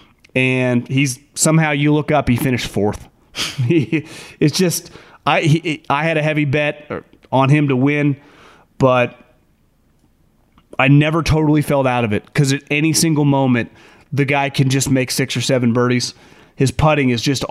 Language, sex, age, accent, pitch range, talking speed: English, male, 30-49, American, 130-160 Hz, 170 wpm